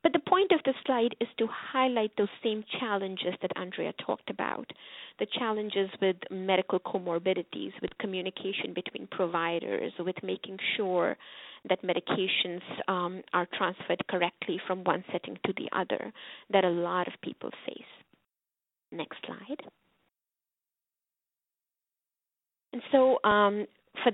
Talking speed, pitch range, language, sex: 115 wpm, 180-215 Hz, English, female